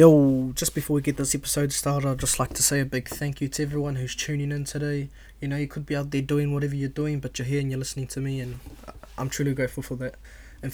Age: 20-39